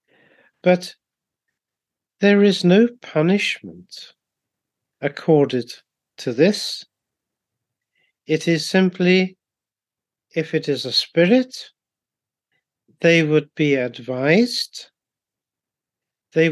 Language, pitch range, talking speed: English, 150-185 Hz, 75 wpm